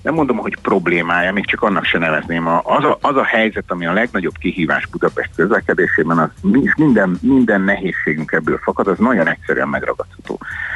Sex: male